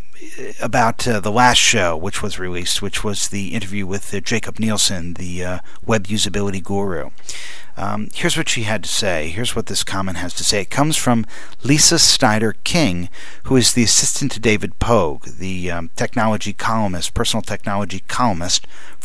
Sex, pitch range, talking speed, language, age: male, 100-125 Hz, 175 wpm, English, 40-59